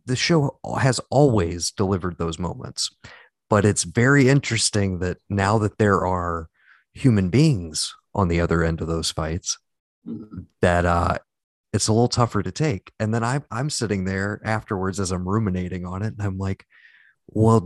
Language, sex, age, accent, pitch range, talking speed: English, male, 30-49, American, 85-115 Hz, 165 wpm